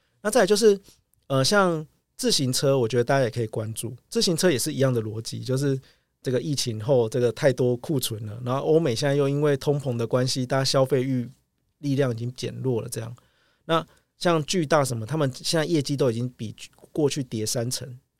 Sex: male